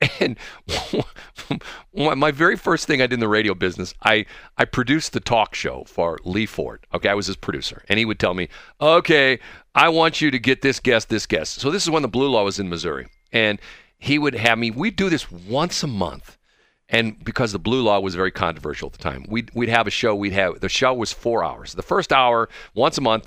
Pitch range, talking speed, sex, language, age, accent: 95-140 Hz, 230 wpm, male, English, 40-59, American